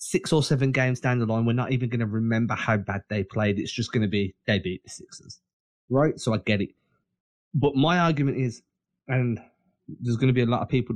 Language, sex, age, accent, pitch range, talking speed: English, male, 20-39, British, 105-130 Hz, 240 wpm